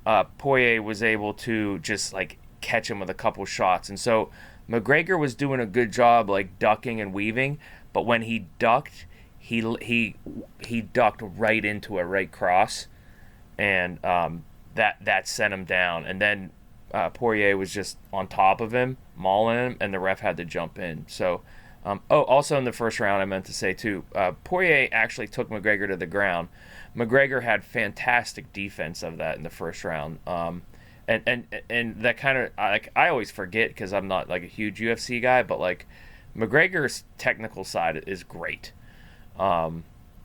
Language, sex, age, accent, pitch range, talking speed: English, male, 20-39, American, 95-120 Hz, 180 wpm